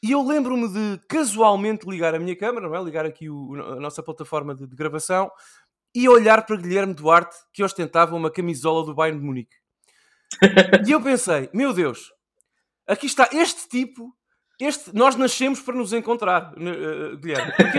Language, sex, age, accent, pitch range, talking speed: Portuguese, male, 20-39, Portuguese, 175-235 Hz, 175 wpm